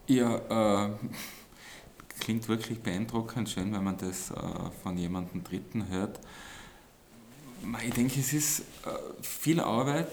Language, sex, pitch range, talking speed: German, male, 95-110 Hz, 125 wpm